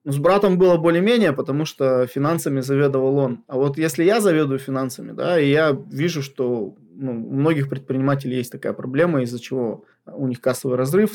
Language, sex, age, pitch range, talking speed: Russian, male, 20-39, 130-160 Hz, 180 wpm